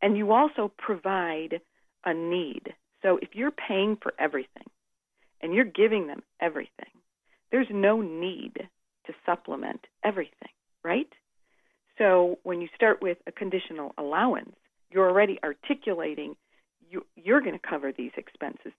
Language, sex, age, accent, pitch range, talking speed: English, female, 40-59, American, 165-215 Hz, 130 wpm